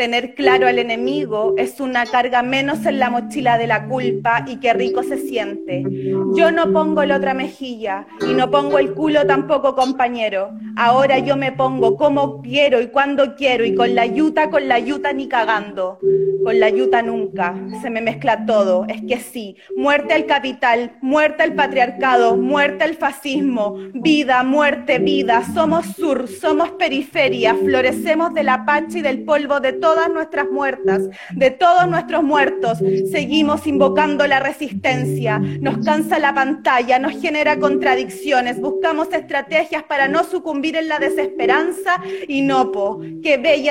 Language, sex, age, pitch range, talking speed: Spanish, female, 30-49, 230-305 Hz, 160 wpm